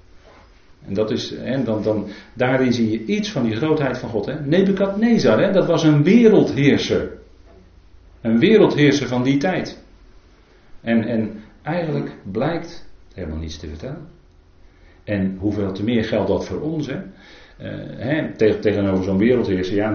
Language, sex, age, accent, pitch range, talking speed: Dutch, male, 40-59, Dutch, 90-120 Hz, 120 wpm